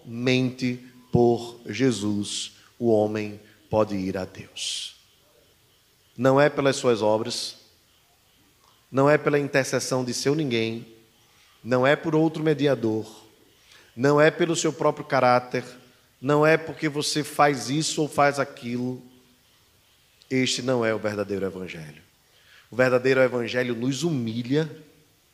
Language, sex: Portuguese, male